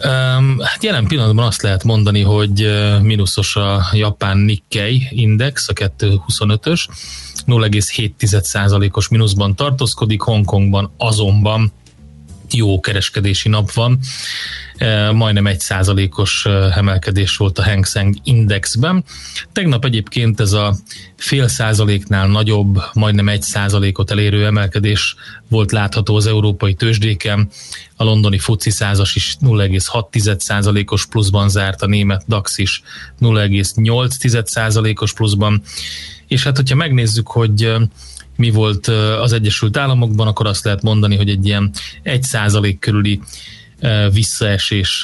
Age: 30-49